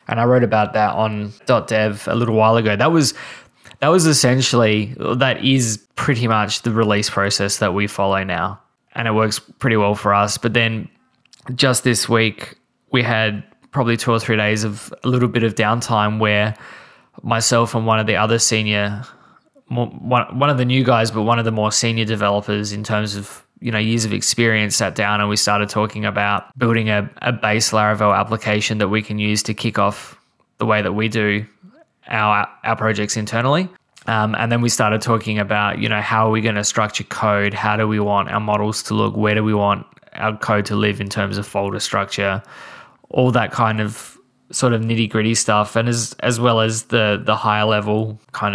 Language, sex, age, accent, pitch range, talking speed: English, male, 10-29, Australian, 105-115 Hz, 205 wpm